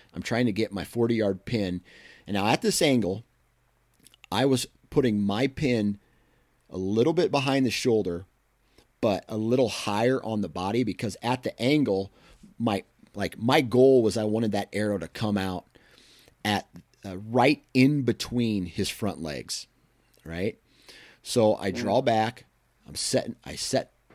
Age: 30-49